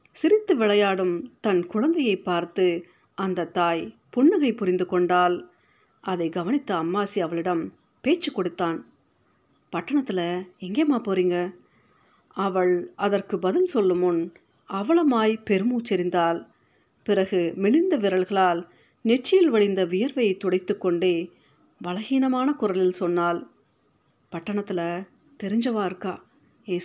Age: 50-69